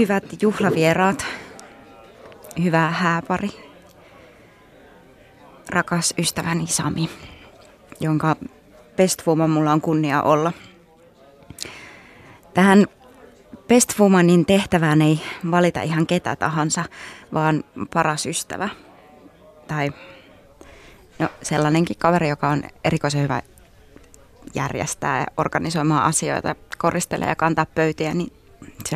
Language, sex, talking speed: Finnish, female, 85 wpm